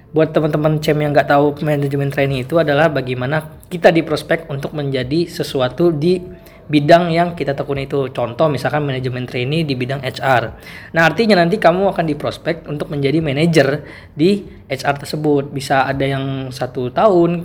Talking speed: 160 wpm